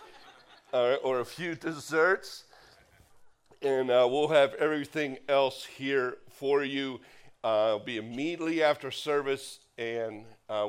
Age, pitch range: 50-69, 125-160 Hz